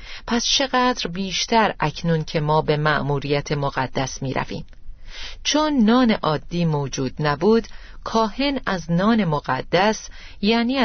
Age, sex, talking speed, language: 40-59, female, 110 wpm, Persian